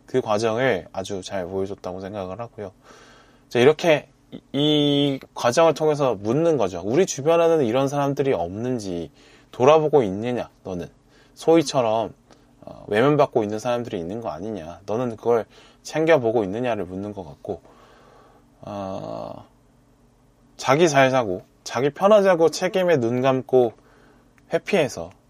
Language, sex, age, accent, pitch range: Korean, male, 20-39, native, 110-145 Hz